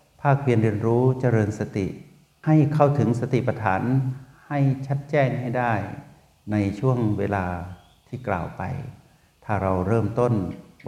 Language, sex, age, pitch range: Thai, male, 60-79, 95-120 Hz